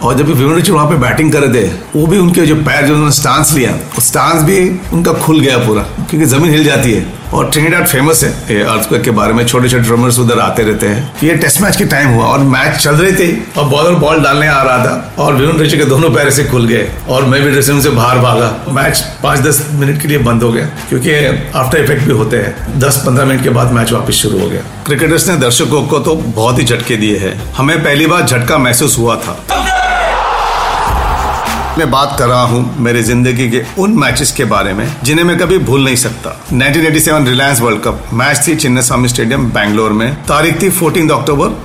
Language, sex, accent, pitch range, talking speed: Hindi, male, native, 120-150 Hz, 220 wpm